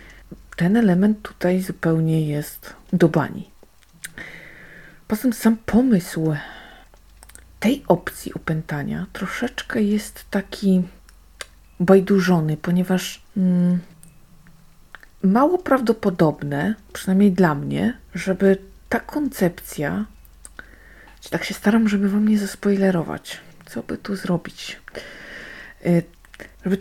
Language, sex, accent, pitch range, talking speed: Polish, female, native, 175-230 Hz, 90 wpm